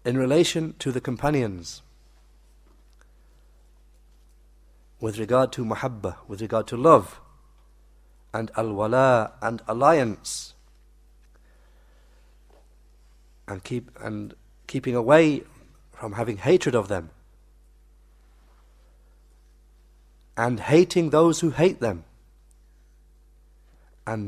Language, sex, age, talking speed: English, male, 60-79, 85 wpm